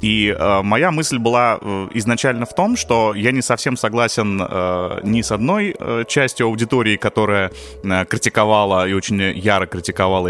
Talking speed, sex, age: 155 wpm, male, 20-39